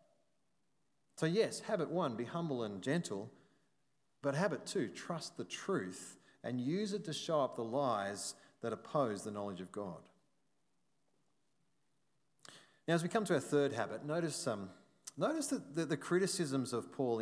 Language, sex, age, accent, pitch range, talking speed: English, male, 30-49, Australian, 115-150 Hz, 155 wpm